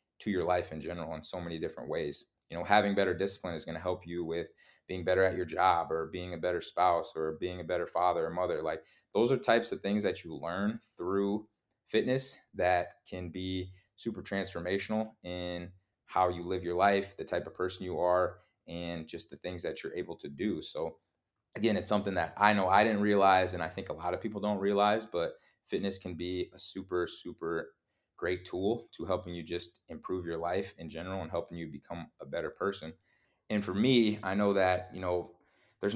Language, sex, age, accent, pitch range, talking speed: English, male, 20-39, American, 85-100 Hz, 215 wpm